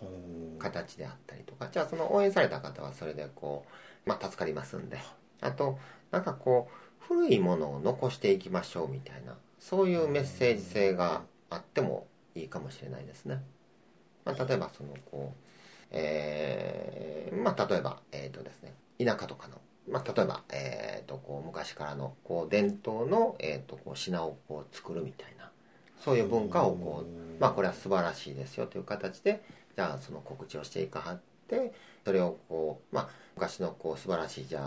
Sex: male